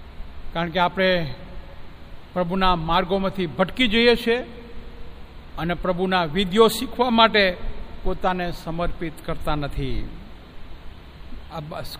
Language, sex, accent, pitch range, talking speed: Gujarati, male, native, 160-245 Hz, 90 wpm